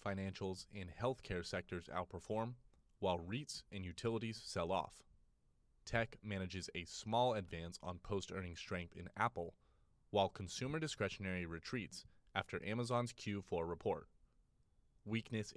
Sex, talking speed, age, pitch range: male, 120 wpm, 30-49, 90-110 Hz